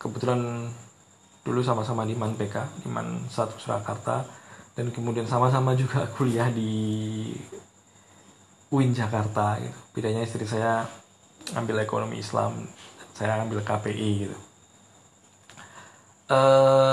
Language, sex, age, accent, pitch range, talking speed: Indonesian, male, 20-39, native, 110-125 Hz, 100 wpm